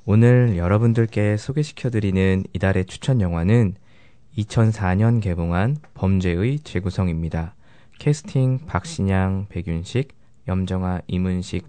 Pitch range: 95-120 Hz